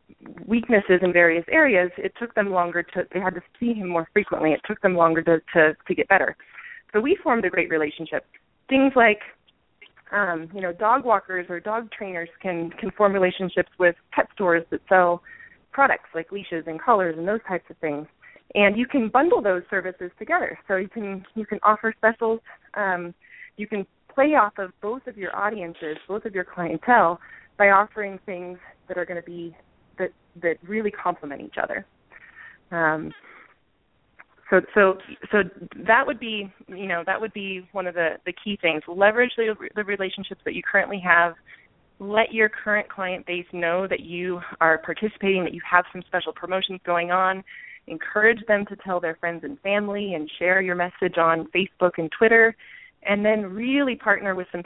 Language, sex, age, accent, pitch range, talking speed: English, female, 20-39, American, 175-210 Hz, 185 wpm